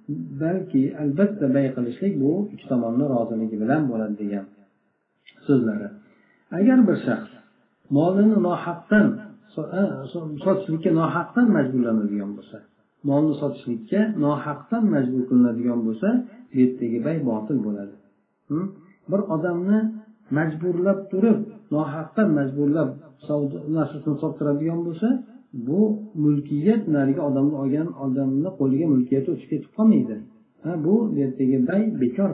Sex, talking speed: male, 95 wpm